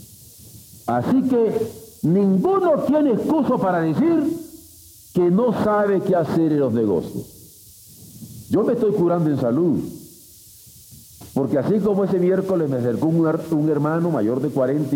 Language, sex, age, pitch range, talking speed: Spanish, male, 50-69, 110-180 Hz, 130 wpm